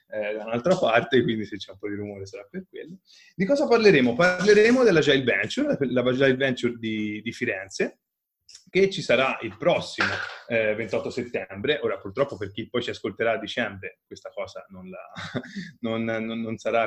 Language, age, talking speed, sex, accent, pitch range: Italian, 20-39, 185 wpm, male, native, 105-165 Hz